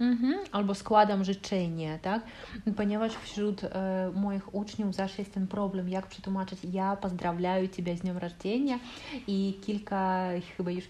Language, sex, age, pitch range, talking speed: Polish, female, 30-49, 180-210 Hz, 145 wpm